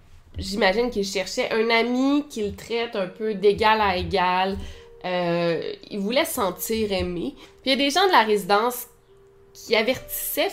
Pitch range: 190-235 Hz